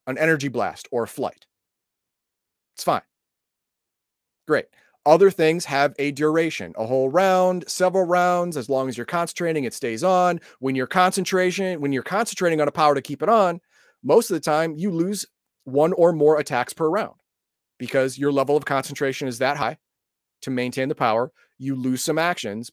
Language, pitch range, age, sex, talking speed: English, 130-175 Hz, 30-49, male, 175 wpm